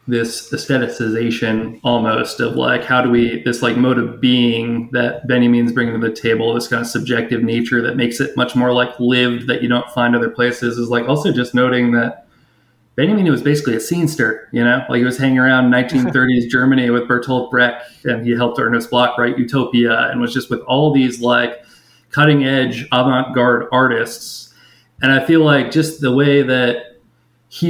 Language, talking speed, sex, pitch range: English, 190 wpm, male, 120-130 Hz